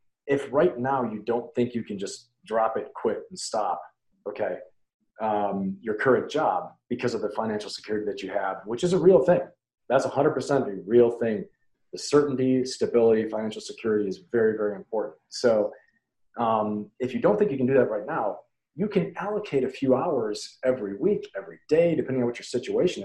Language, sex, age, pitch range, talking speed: English, male, 40-59, 105-130 Hz, 190 wpm